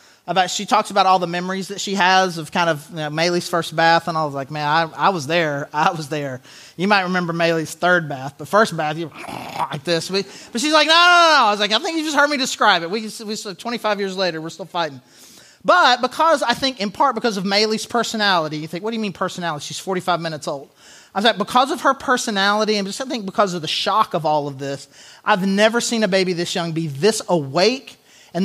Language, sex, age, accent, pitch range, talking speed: English, male, 30-49, American, 165-225 Hz, 255 wpm